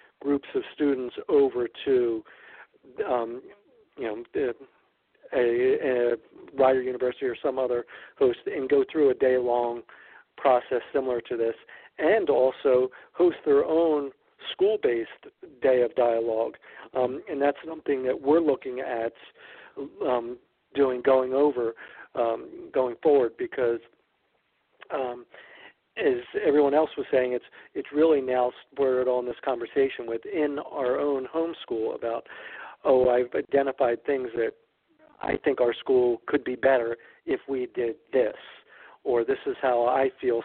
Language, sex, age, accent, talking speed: English, male, 50-69, American, 135 wpm